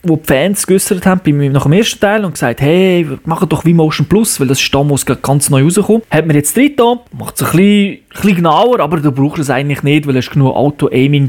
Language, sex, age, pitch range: German, male, 30-49, 140-190 Hz